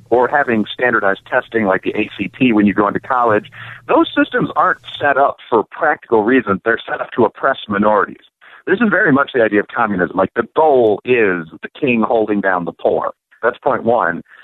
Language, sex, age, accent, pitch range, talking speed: English, male, 50-69, American, 110-170 Hz, 195 wpm